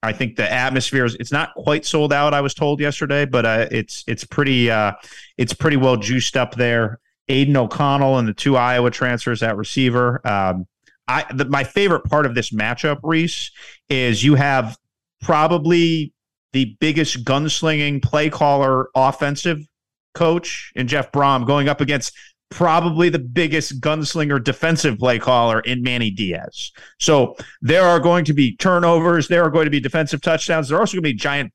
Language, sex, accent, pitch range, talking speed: English, male, American, 120-155 Hz, 175 wpm